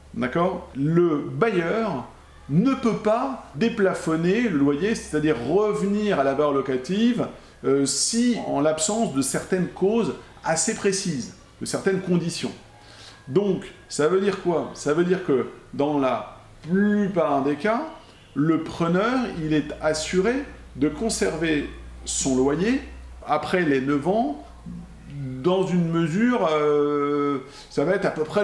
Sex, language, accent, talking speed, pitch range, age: male, French, French, 135 wpm, 140-195 Hz, 40-59